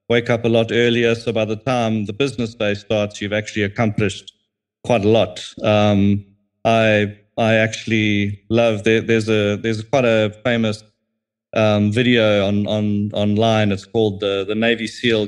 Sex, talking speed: male, 165 wpm